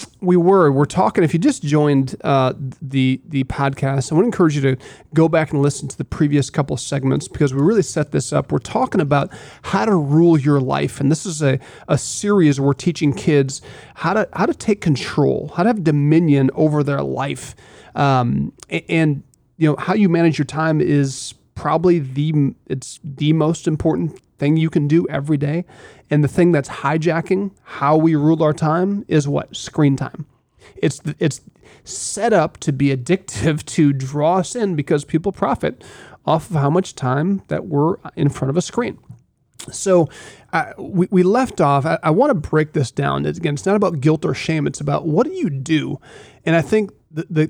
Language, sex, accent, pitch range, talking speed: English, male, American, 140-170 Hz, 200 wpm